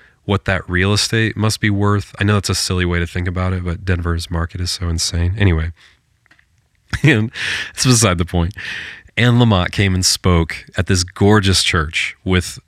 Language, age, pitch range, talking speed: English, 30-49, 85-100 Hz, 185 wpm